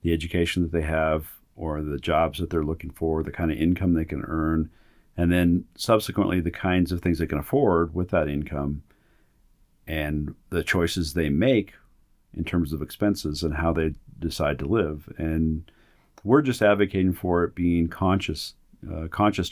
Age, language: 50-69, English